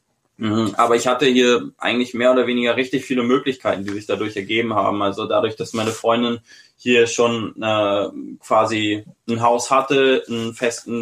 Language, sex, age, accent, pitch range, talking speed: German, male, 10-29, German, 110-125 Hz, 165 wpm